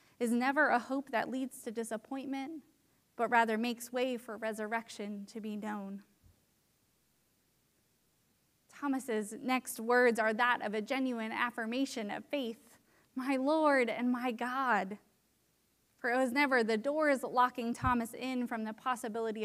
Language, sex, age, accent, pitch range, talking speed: English, female, 20-39, American, 220-255 Hz, 140 wpm